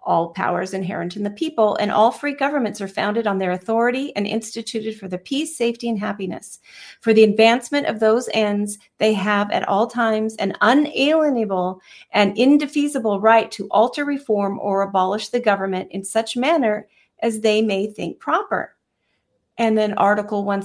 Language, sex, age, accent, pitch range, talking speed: English, female, 40-59, American, 200-245 Hz, 170 wpm